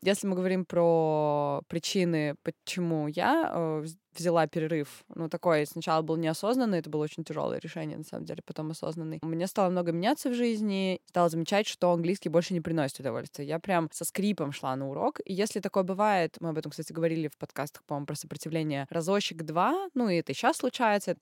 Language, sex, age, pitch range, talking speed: Russian, female, 20-39, 155-185 Hz, 185 wpm